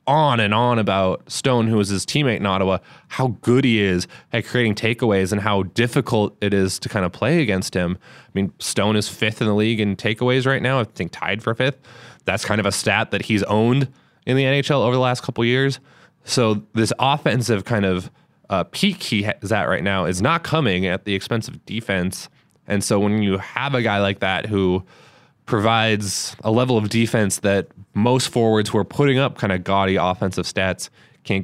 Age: 20-39